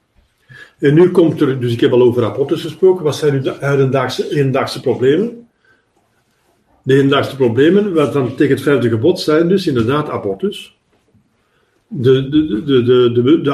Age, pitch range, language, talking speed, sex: 50-69, 130-170 Hz, Dutch, 160 wpm, male